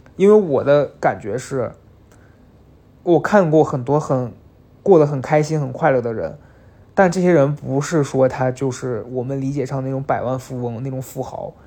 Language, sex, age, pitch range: Chinese, male, 20-39, 130-155 Hz